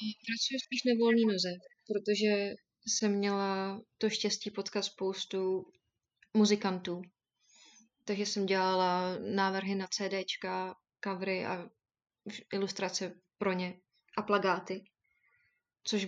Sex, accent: female, native